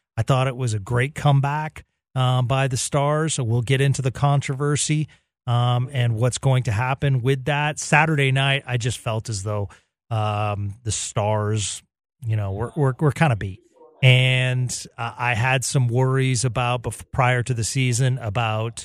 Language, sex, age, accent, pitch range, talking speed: English, male, 30-49, American, 115-145 Hz, 180 wpm